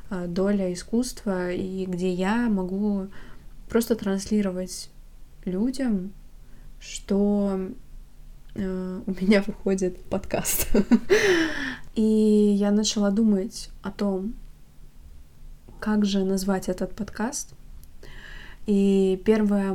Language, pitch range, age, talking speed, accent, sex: Russian, 195-215 Hz, 20-39, 80 wpm, native, female